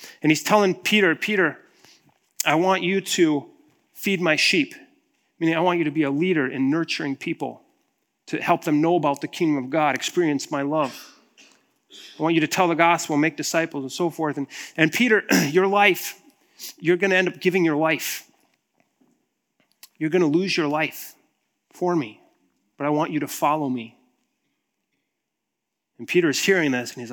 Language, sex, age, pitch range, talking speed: English, male, 30-49, 150-185 Hz, 180 wpm